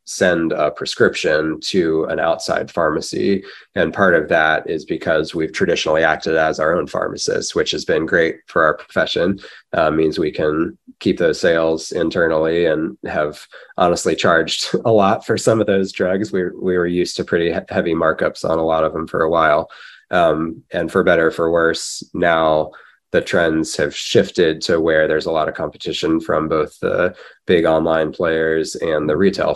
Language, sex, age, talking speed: English, male, 20-39, 180 wpm